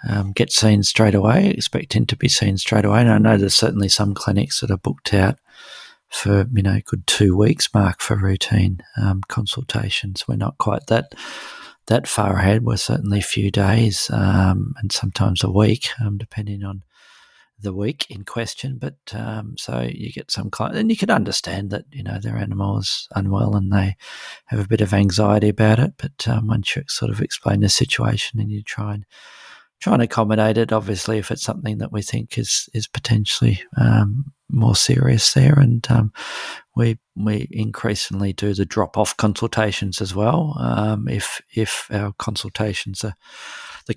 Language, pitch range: English, 100-115 Hz